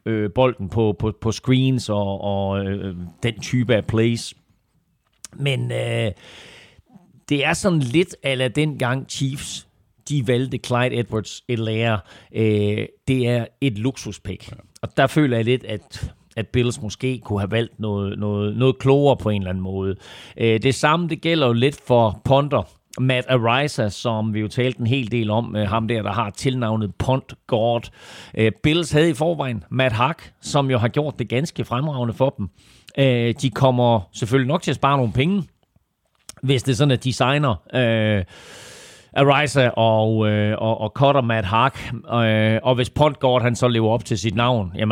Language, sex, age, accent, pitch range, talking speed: Danish, male, 40-59, native, 110-135 Hz, 170 wpm